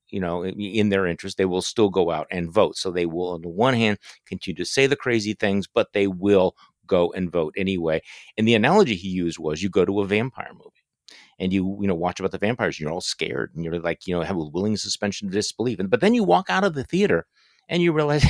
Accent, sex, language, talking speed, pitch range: American, male, English, 260 wpm, 90-130 Hz